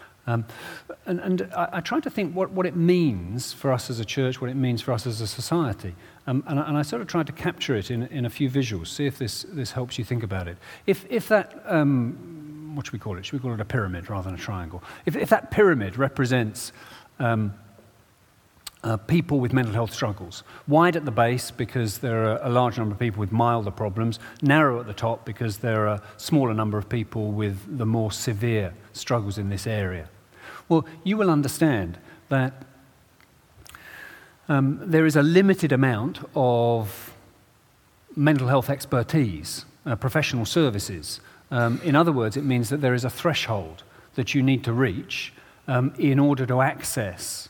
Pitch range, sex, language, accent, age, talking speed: 110-140 Hz, male, English, British, 40-59, 195 wpm